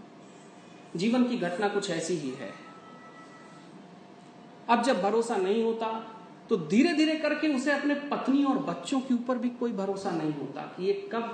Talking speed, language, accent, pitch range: 165 wpm, Hindi, native, 165-245 Hz